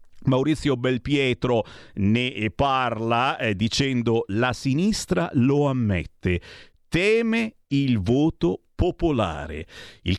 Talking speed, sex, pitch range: 90 wpm, male, 100-140 Hz